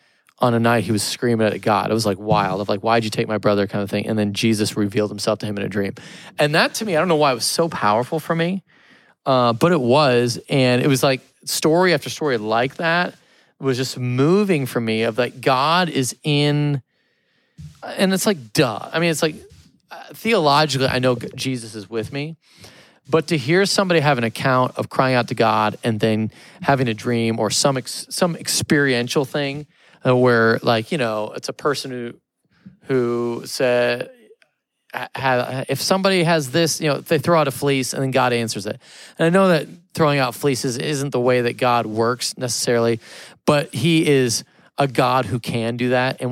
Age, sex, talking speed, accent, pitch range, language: 30-49, male, 205 wpm, American, 120-155 Hz, English